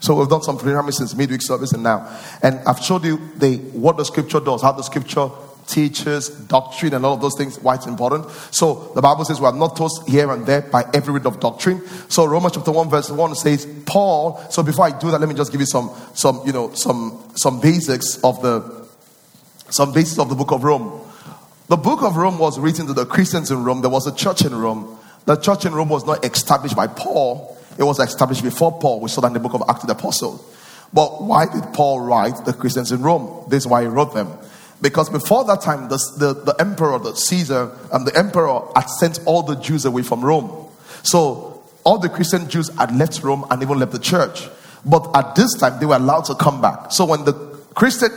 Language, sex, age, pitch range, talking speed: English, male, 30-49, 135-165 Hz, 235 wpm